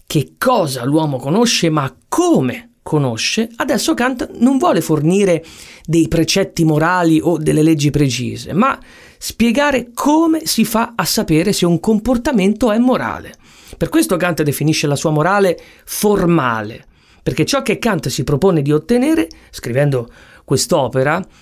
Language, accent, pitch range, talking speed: Italian, native, 155-240 Hz, 135 wpm